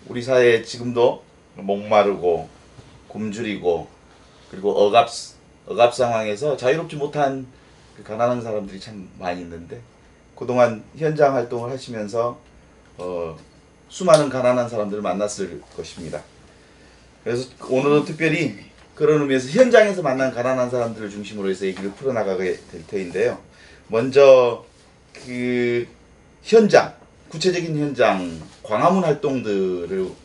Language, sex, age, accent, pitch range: Korean, male, 30-49, native, 105-140 Hz